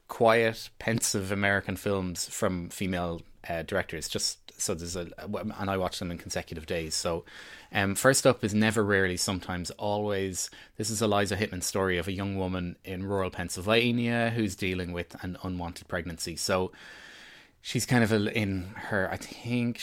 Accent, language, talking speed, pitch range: Irish, English, 165 wpm, 90-105 Hz